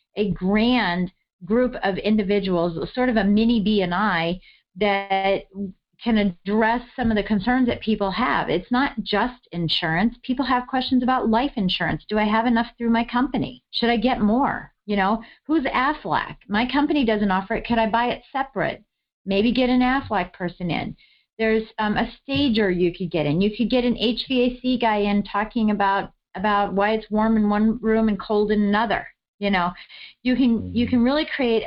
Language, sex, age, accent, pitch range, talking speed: English, female, 40-59, American, 195-235 Hz, 190 wpm